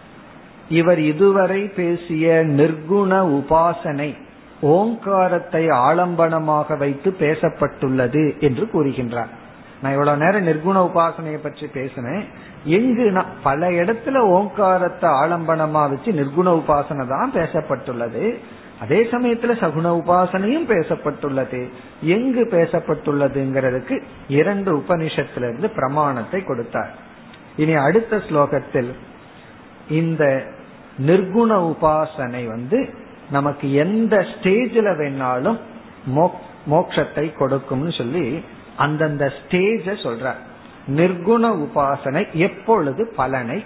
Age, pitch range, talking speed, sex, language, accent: 50-69, 135-180 Hz, 85 wpm, male, Tamil, native